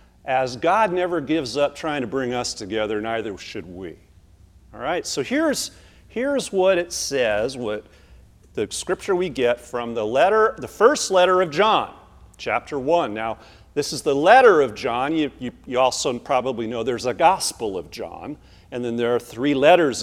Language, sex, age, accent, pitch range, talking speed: English, male, 40-59, American, 110-185 Hz, 180 wpm